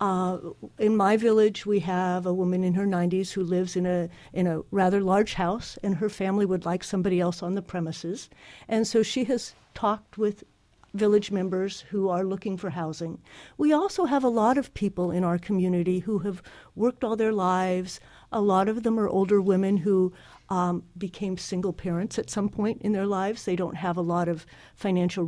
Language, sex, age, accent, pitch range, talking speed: English, female, 50-69, American, 175-205 Hz, 200 wpm